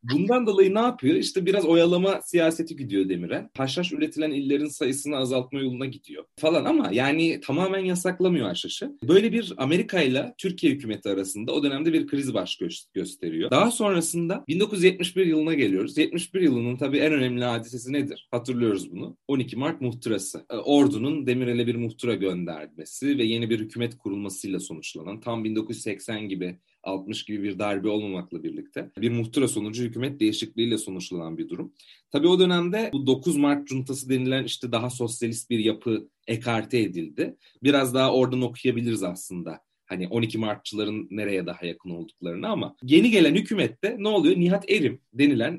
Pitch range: 115-175 Hz